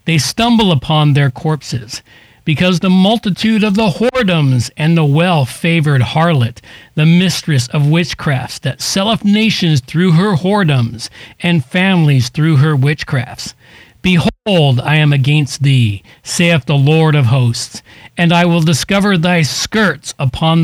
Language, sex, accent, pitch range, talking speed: English, male, American, 130-170 Hz, 135 wpm